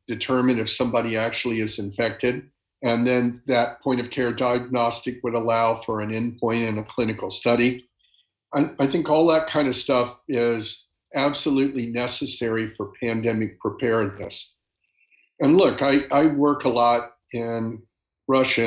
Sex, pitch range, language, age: male, 110-130 Hz, English, 50-69